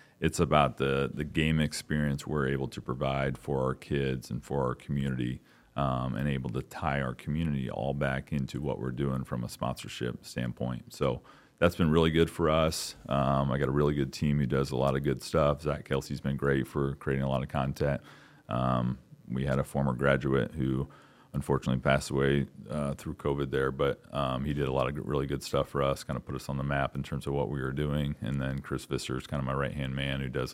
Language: English